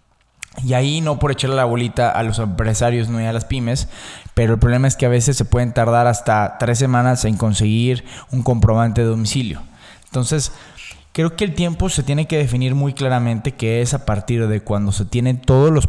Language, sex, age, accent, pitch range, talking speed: Spanish, male, 20-39, Mexican, 105-130 Hz, 210 wpm